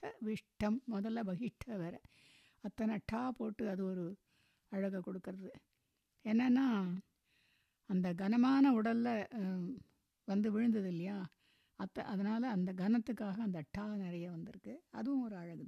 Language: Tamil